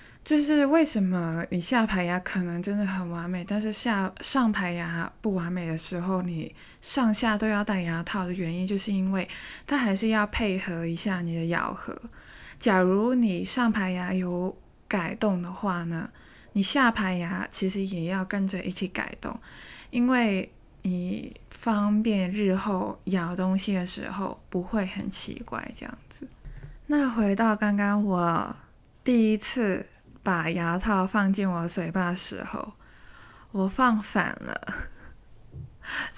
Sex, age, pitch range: female, 20-39, 180-220 Hz